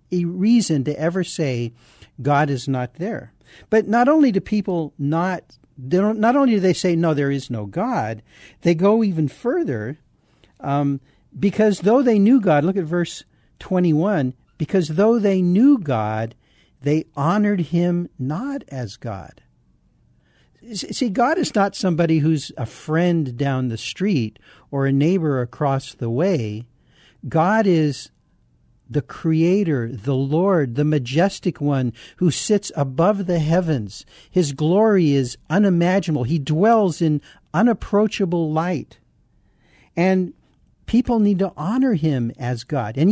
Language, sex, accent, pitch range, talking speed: English, male, American, 140-200 Hz, 140 wpm